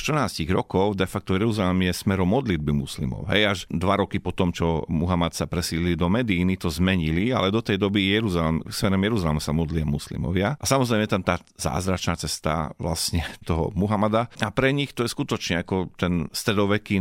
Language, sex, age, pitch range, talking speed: Slovak, male, 40-59, 85-105 Hz, 175 wpm